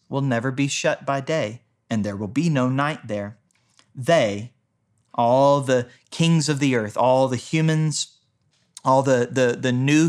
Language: English